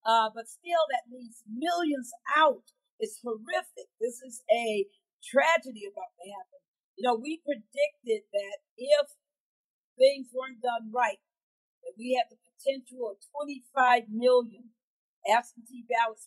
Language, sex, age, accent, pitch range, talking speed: English, female, 50-69, American, 235-315 Hz, 135 wpm